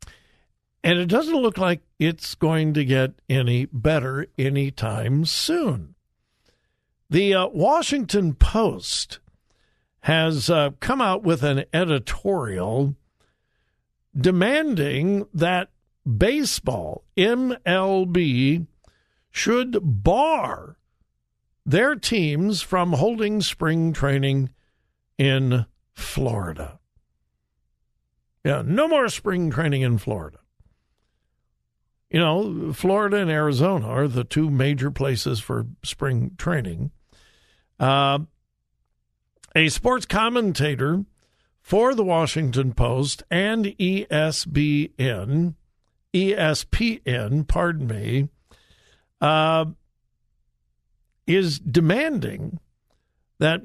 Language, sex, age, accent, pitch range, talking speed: English, male, 60-79, American, 135-185 Hz, 85 wpm